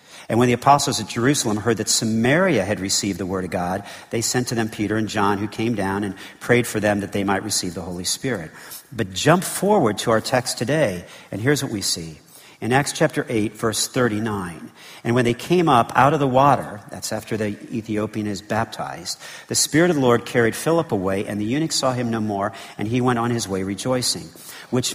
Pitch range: 105-140 Hz